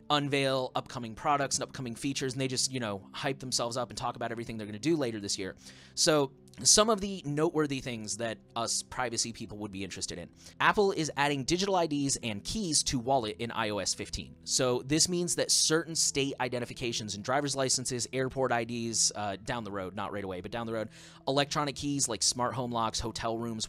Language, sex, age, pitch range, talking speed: English, male, 30-49, 110-135 Hz, 205 wpm